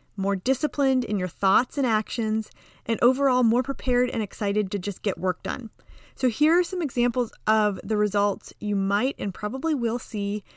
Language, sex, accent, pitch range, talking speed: English, female, American, 200-250 Hz, 180 wpm